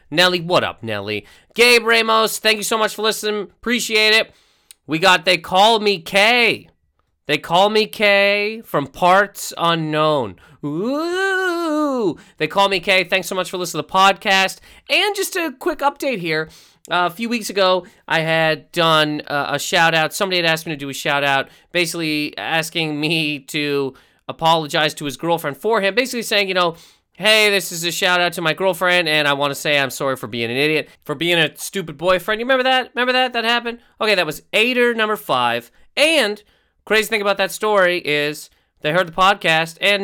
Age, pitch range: 30-49, 160-235 Hz